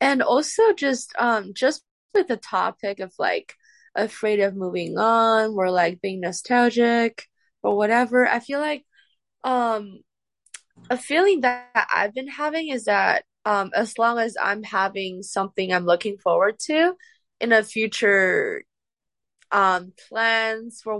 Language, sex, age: English, female, 10-29